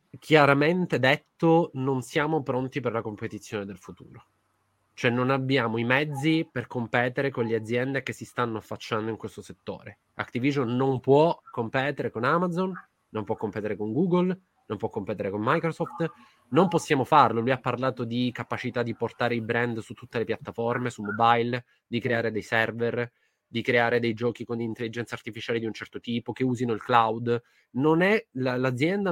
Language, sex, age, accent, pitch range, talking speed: Italian, male, 20-39, native, 115-145 Hz, 170 wpm